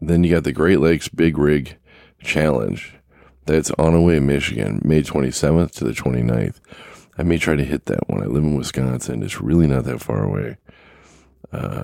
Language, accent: English, American